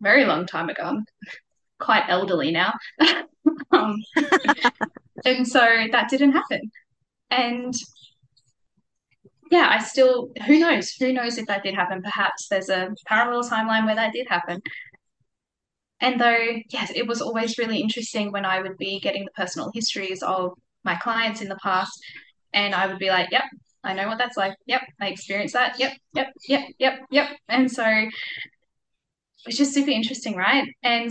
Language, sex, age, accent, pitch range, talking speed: English, female, 10-29, Australian, 195-250 Hz, 160 wpm